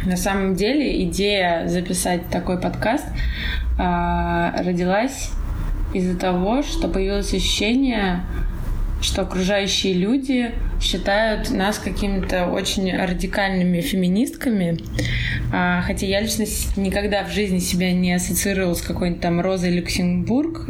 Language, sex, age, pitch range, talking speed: Russian, female, 20-39, 175-205 Hz, 105 wpm